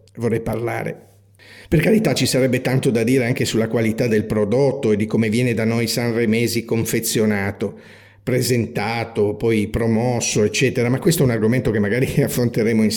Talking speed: 160 wpm